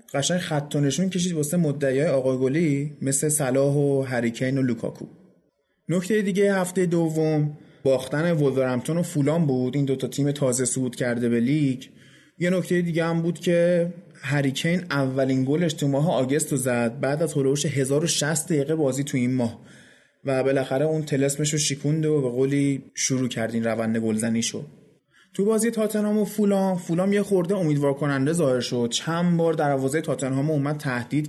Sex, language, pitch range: male, Persian, 130-160 Hz